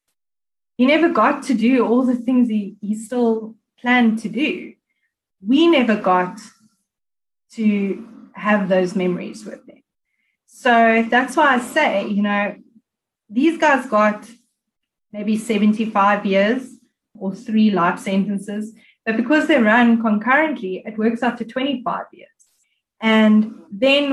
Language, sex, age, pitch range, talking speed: English, female, 20-39, 210-250 Hz, 130 wpm